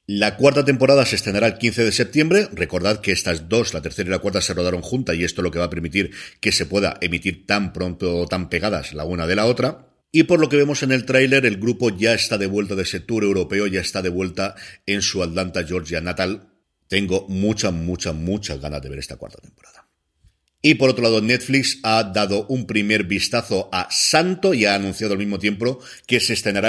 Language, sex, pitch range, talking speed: Spanish, male, 95-130 Hz, 225 wpm